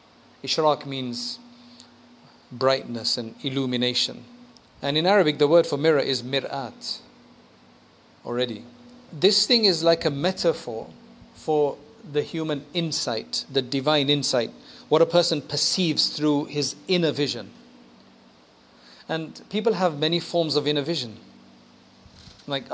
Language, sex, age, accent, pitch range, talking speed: English, male, 40-59, South African, 135-170 Hz, 120 wpm